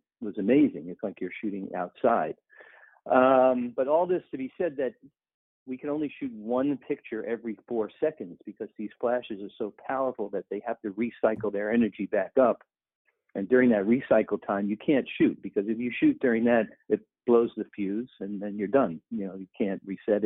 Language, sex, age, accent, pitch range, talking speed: English, male, 50-69, American, 105-130 Hz, 195 wpm